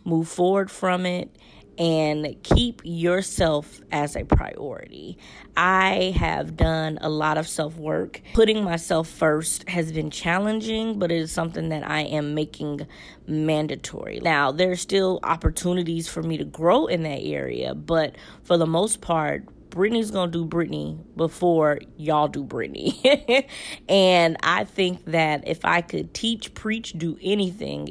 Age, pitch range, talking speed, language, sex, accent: 20-39, 155-185 Hz, 150 wpm, English, female, American